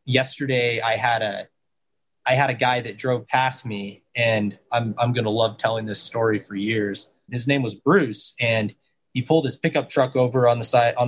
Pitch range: 115-140 Hz